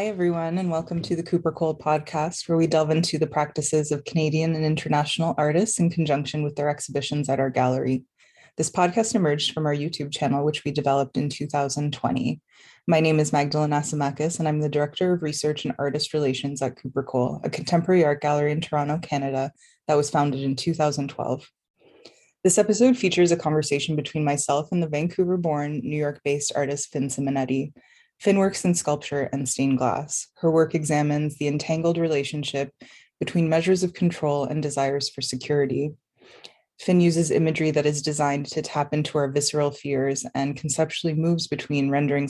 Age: 20-39